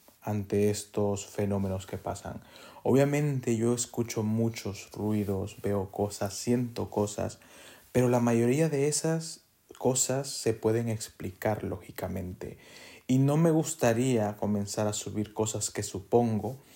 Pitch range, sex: 100-120 Hz, male